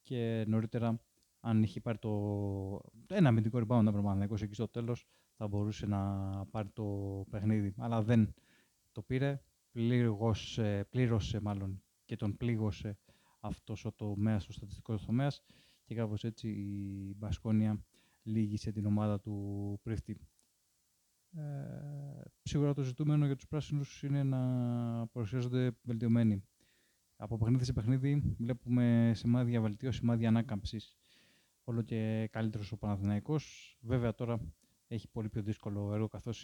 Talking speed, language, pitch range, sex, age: 125 wpm, Greek, 105-120 Hz, male, 20-39